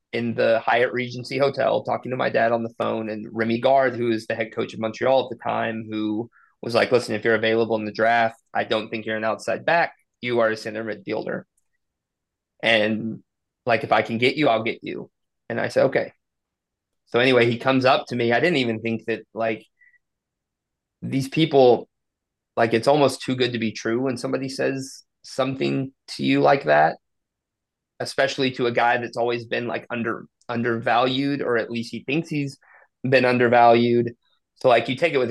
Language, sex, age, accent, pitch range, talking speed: English, male, 30-49, American, 115-130 Hz, 195 wpm